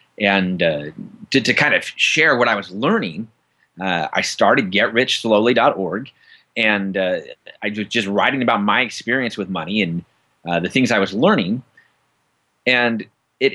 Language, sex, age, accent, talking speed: English, male, 30-49, American, 155 wpm